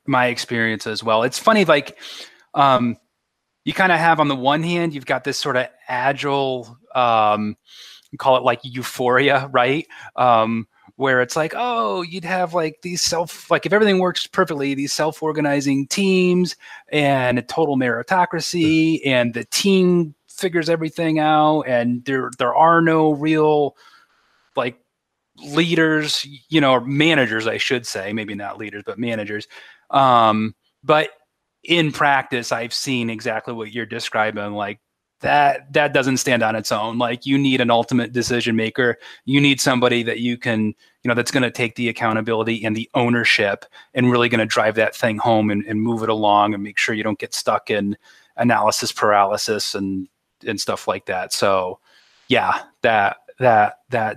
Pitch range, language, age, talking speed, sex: 115-155 Hz, English, 30-49, 165 wpm, male